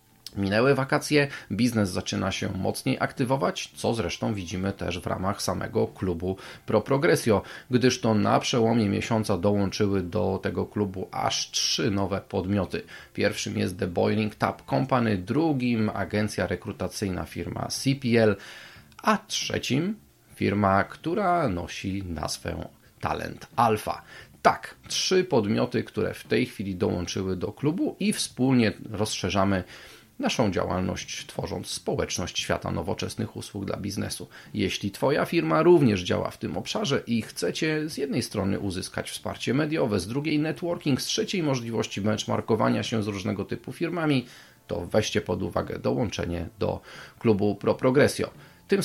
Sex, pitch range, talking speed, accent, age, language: male, 100-135 Hz, 135 wpm, native, 30-49, Polish